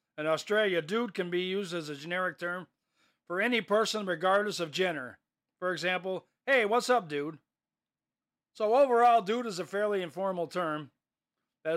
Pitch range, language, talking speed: 165-225 Hz, English, 160 wpm